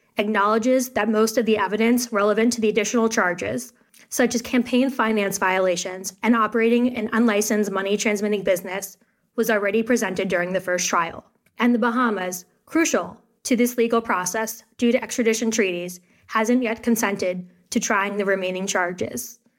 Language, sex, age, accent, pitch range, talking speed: English, female, 10-29, American, 200-235 Hz, 150 wpm